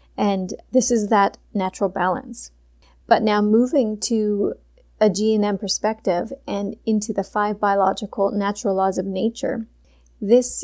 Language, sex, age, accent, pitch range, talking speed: English, female, 30-49, American, 200-230 Hz, 130 wpm